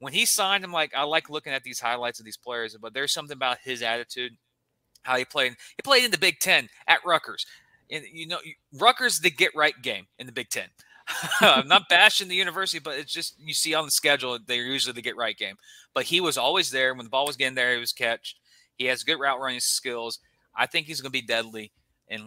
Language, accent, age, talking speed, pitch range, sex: English, American, 30-49, 245 wpm, 115-155 Hz, male